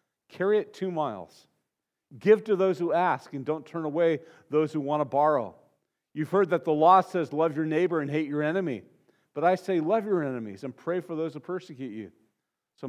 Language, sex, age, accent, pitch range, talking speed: English, male, 40-59, American, 150-190 Hz, 210 wpm